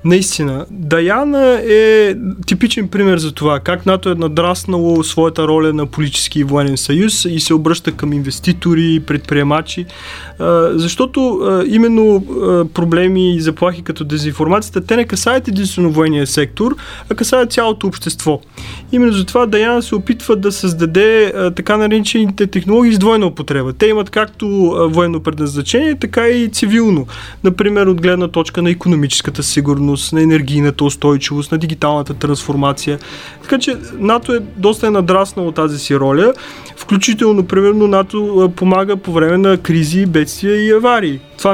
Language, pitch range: Bulgarian, 160-205 Hz